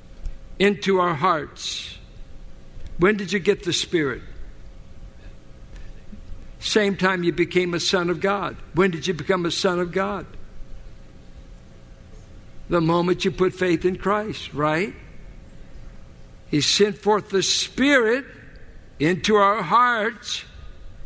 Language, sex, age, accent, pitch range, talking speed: English, male, 60-79, American, 165-235 Hz, 115 wpm